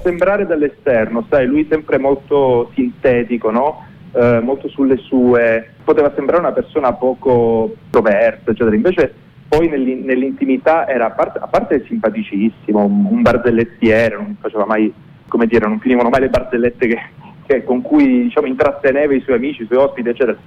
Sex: male